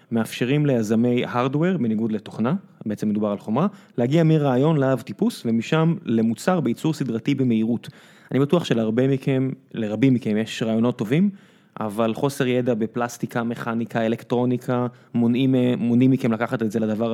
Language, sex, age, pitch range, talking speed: Hebrew, male, 20-39, 120-155 Hz, 140 wpm